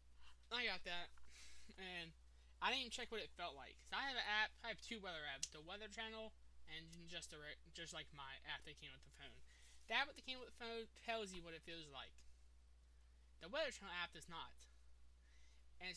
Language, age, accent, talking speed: English, 20-39, American, 220 wpm